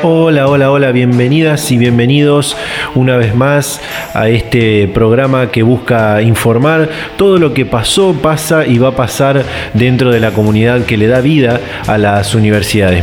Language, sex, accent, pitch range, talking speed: Spanish, male, Argentinian, 110-140 Hz, 160 wpm